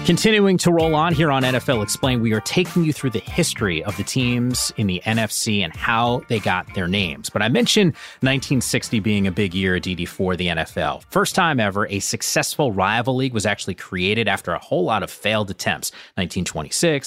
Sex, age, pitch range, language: male, 30-49, 100-135 Hz, English